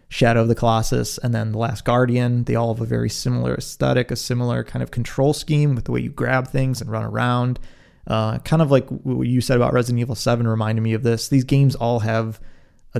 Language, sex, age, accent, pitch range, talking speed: English, male, 30-49, American, 110-135 Hz, 235 wpm